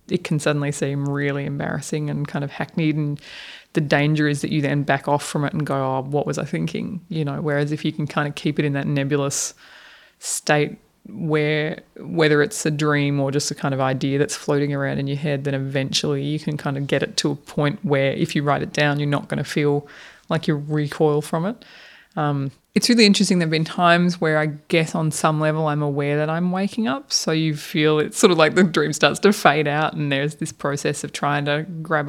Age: 20-39